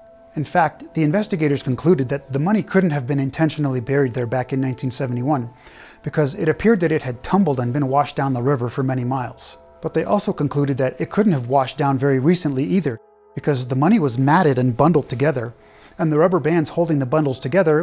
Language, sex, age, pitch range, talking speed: English, male, 30-49, 130-165 Hz, 210 wpm